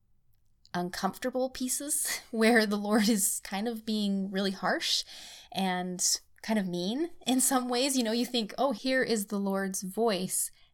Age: 20-39